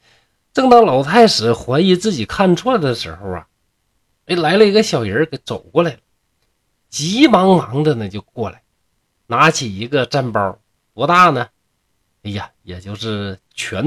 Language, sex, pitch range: Chinese, male, 105-155 Hz